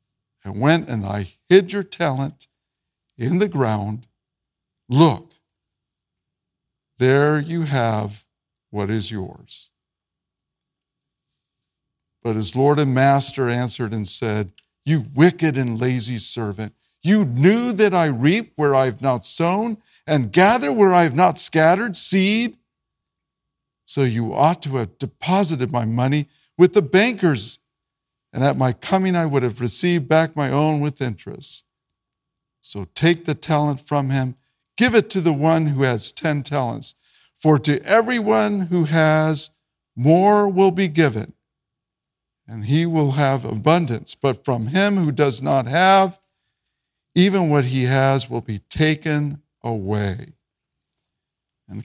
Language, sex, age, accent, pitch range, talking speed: English, male, 50-69, American, 115-165 Hz, 135 wpm